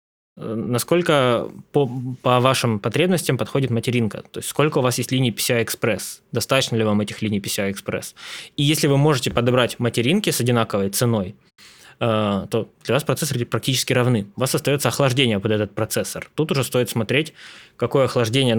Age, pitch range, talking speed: 20-39, 115-135 Hz, 160 wpm